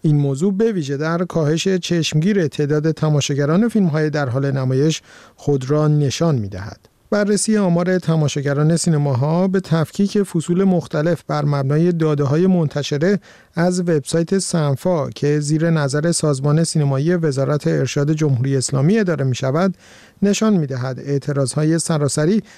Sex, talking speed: male, 135 wpm